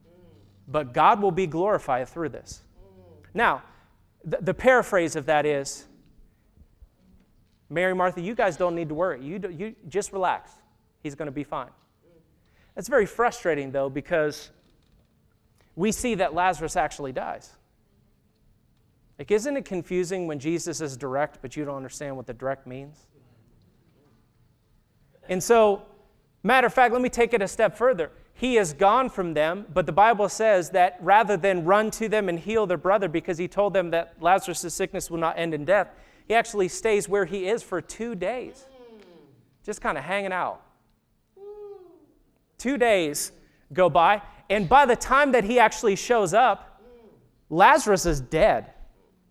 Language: English